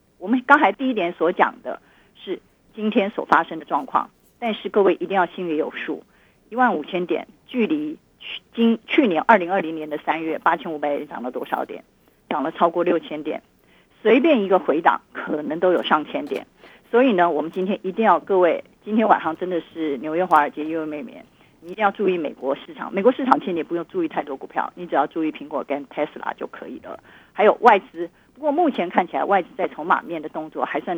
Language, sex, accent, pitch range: Chinese, female, native, 165-225 Hz